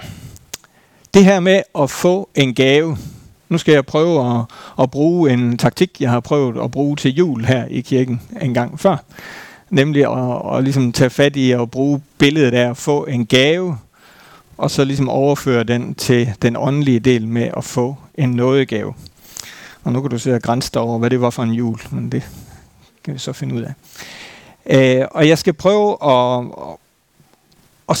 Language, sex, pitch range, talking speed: Danish, male, 125-155 Hz, 185 wpm